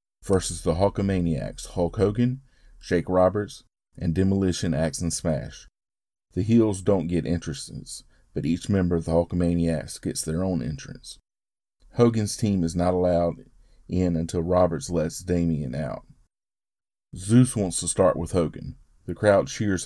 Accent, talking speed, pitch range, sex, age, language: American, 140 wpm, 85-100 Hz, male, 40-59, English